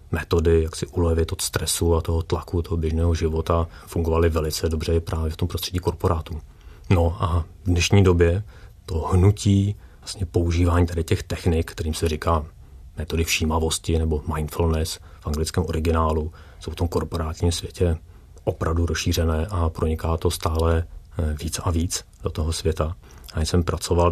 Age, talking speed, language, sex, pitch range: 30-49, 155 wpm, Czech, male, 80-90 Hz